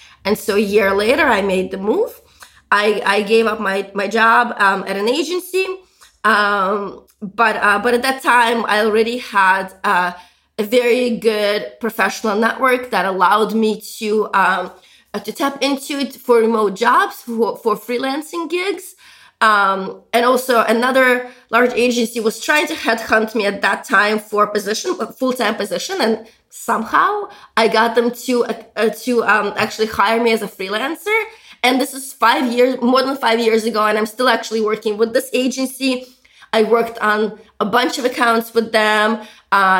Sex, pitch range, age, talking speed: female, 210-255 Hz, 20-39, 175 wpm